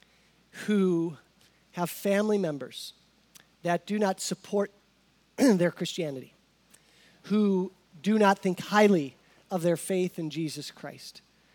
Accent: American